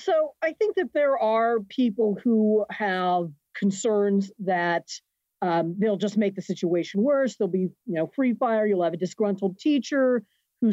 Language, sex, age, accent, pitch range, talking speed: English, female, 40-59, American, 175-220 Hz, 170 wpm